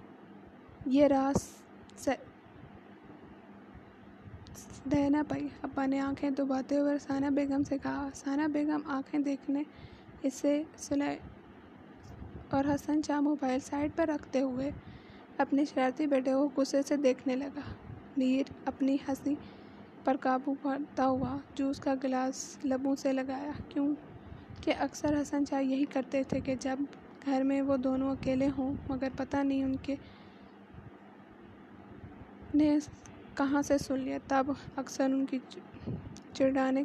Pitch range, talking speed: 270-285 Hz, 130 wpm